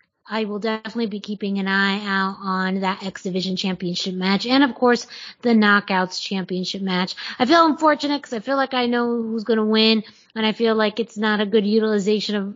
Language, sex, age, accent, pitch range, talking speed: English, female, 20-39, American, 210-250 Hz, 210 wpm